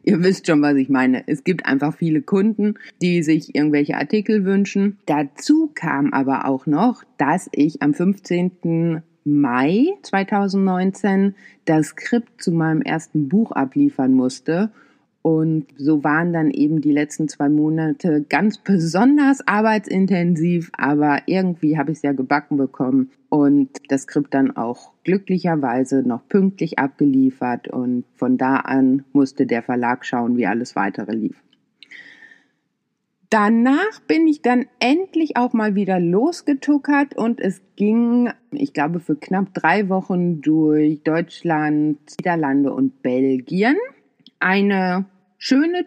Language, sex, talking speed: German, female, 130 wpm